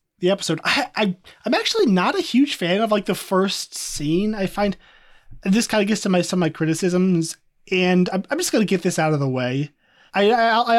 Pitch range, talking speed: 150-200 Hz, 220 wpm